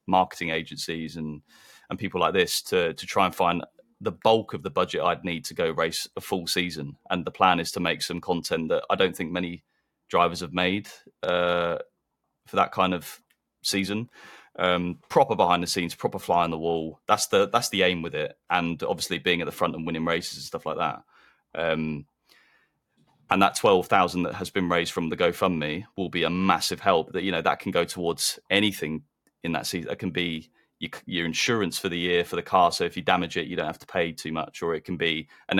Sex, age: male, 30-49